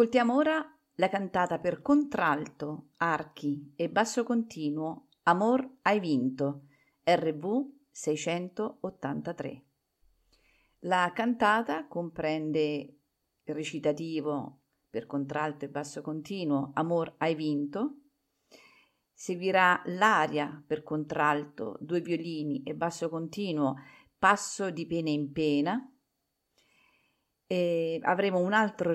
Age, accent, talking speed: 50-69, native, 95 wpm